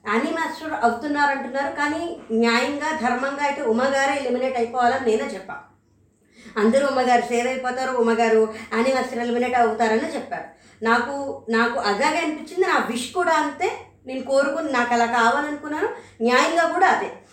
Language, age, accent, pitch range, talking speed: Telugu, 20-39, native, 230-290 Hz, 125 wpm